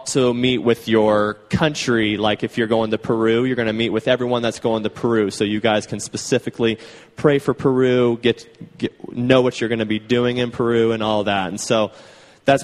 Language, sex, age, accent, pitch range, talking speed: English, male, 20-39, American, 105-125 Hz, 220 wpm